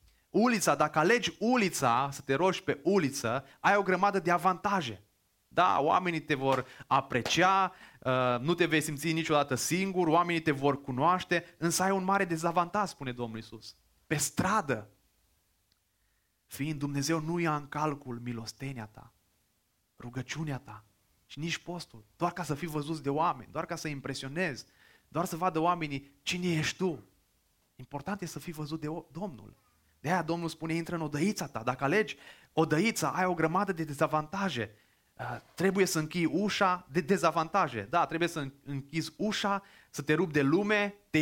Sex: male